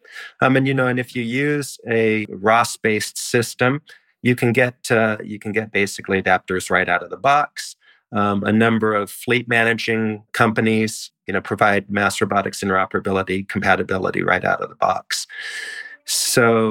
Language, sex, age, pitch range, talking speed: German, male, 40-59, 100-120 Hz, 165 wpm